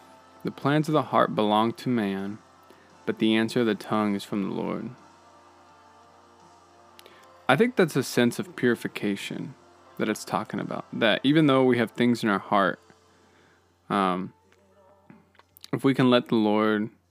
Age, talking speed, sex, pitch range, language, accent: 20-39, 160 wpm, male, 95-120 Hz, English, American